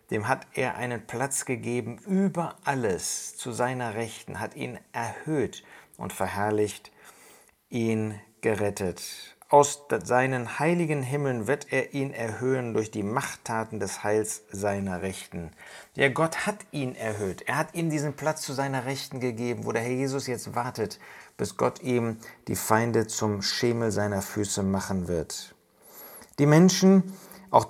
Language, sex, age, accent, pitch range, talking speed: German, male, 50-69, German, 105-135 Hz, 145 wpm